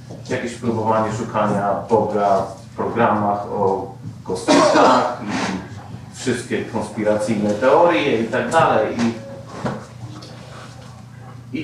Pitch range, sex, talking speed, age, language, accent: 115-150 Hz, male, 90 wpm, 40-59, Polish, native